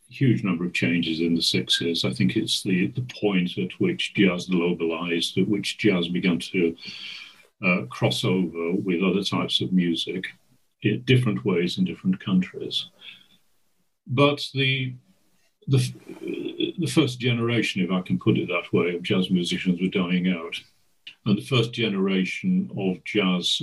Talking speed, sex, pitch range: 155 wpm, male, 90-115 Hz